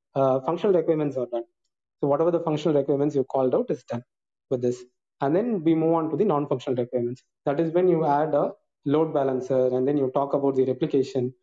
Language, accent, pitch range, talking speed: Tamil, native, 130-160 Hz, 220 wpm